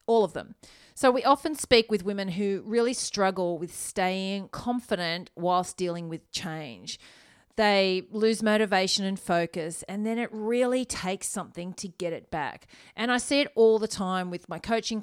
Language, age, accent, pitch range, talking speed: English, 40-59, Australian, 180-225 Hz, 175 wpm